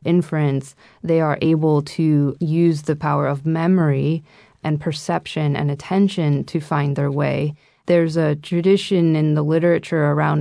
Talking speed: 145 wpm